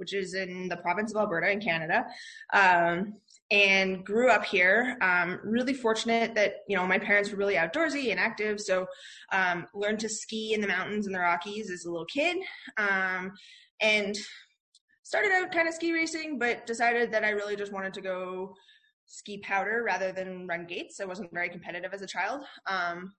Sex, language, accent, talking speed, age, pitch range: female, English, American, 190 wpm, 20-39, 185-230 Hz